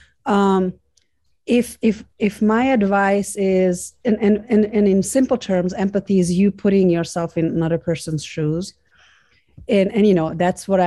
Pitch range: 175-210 Hz